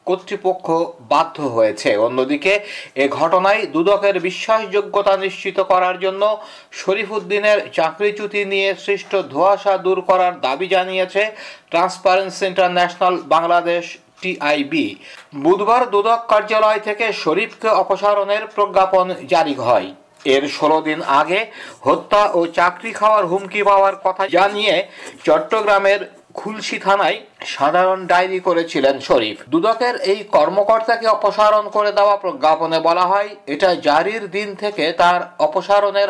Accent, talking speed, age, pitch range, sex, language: native, 70 wpm, 60-79, 180-210 Hz, male, Bengali